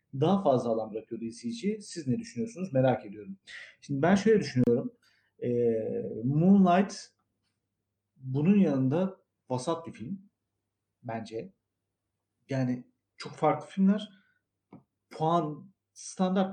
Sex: male